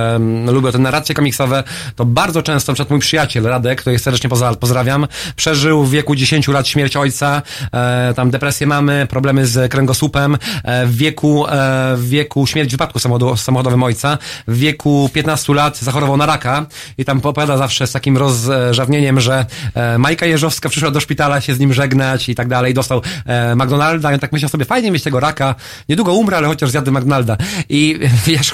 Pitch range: 130-150 Hz